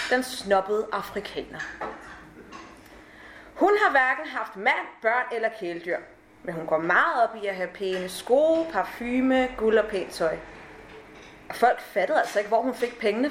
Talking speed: 155 wpm